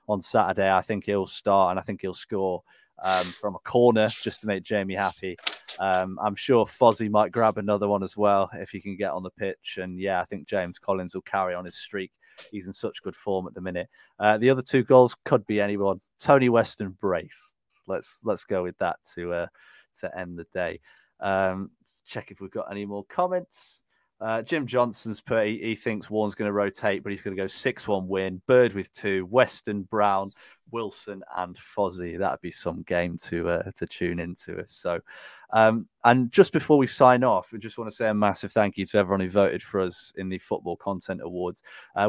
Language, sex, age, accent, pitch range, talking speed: English, male, 30-49, British, 95-115 Hz, 215 wpm